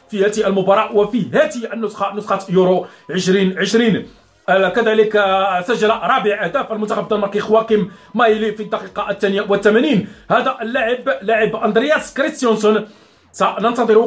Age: 40-59